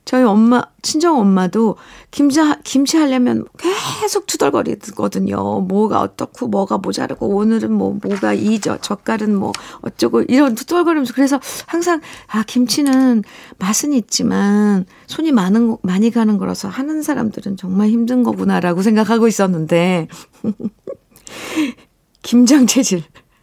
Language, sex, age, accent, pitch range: Korean, female, 50-69, native, 190-260 Hz